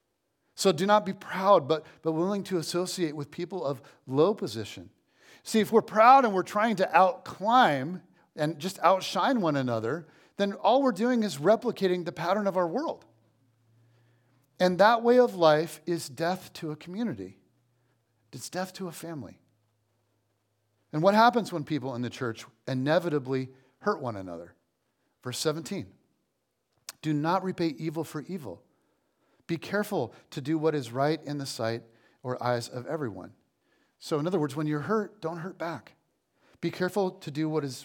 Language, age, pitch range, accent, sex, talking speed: English, 40-59, 130-190 Hz, American, male, 165 wpm